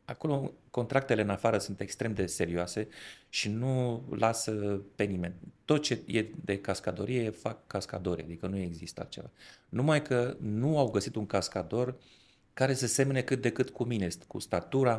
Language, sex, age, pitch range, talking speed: Romanian, male, 30-49, 95-125 Hz, 165 wpm